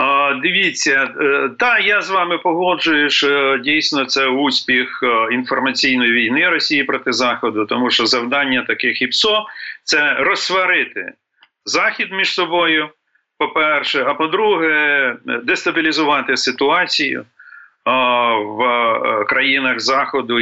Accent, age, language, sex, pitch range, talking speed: native, 40-59, Ukrainian, male, 130-195 Hz, 100 wpm